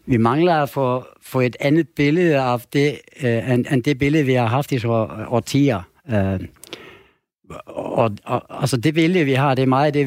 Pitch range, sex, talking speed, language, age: 110-140 Hz, male, 205 wpm, Danish, 60-79